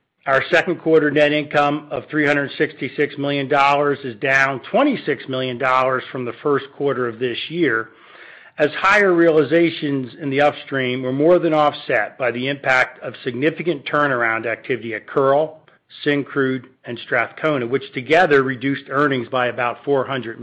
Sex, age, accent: male, 50-69, American